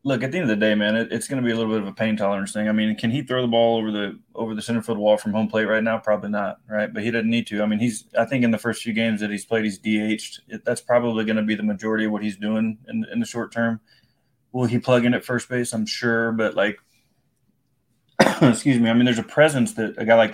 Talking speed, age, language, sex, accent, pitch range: 300 wpm, 20-39, English, male, American, 110-120 Hz